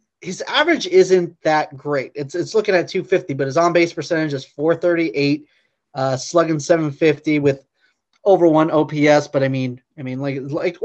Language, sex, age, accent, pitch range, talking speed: English, male, 30-49, American, 140-180 Hz, 165 wpm